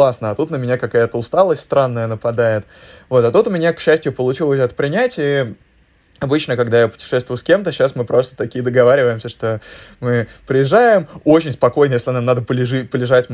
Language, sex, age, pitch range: Russian, male, 20-39, 115-140 Hz